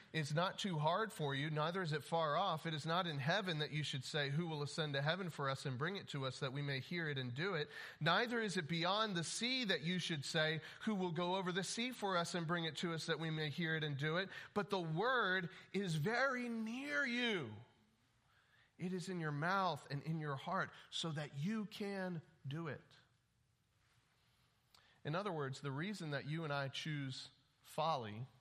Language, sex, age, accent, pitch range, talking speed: English, male, 40-59, American, 130-170 Hz, 220 wpm